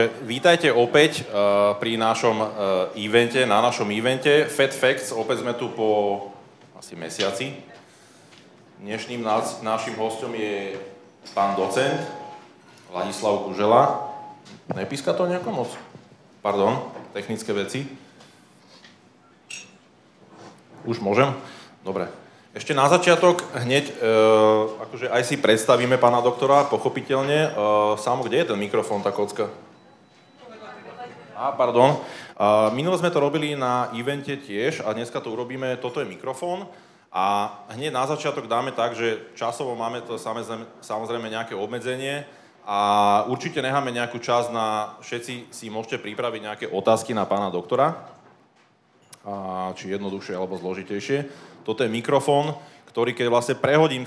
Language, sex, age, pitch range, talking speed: Czech, male, 20-39, 105-140 Hz, 125 wpm